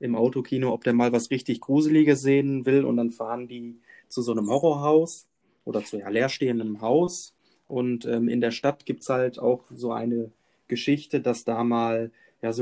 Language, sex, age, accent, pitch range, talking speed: German, male, 20-39, German, 120-140 Hz, 185 wpm